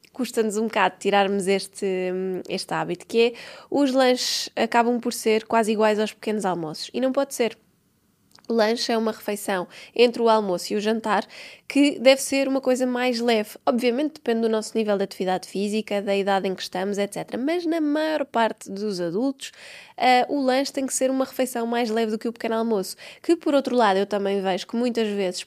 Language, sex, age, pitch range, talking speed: Portuguese, female, 20-39, 205-245 Hz, 200 wpm